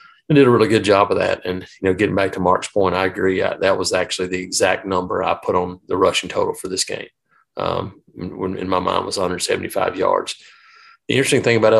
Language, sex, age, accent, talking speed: English, male, 30-49, American, 230 wpm